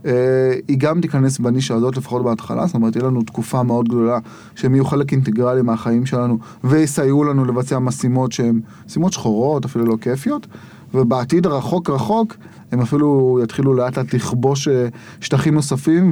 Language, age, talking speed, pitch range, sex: Hebrew, 30-49, 160 wpm, 120-155 Hz, male